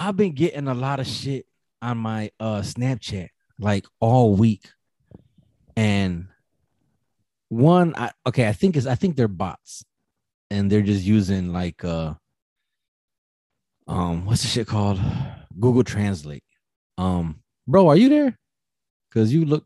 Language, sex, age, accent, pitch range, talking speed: English, male, 30-49, American, 90-120 Hz, 140 wpm